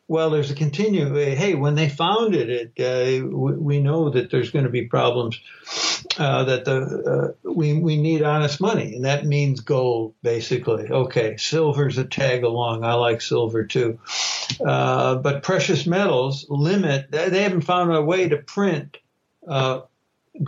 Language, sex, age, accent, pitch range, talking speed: English, male, 60-79, American, 130-170 Hz, 160 wpm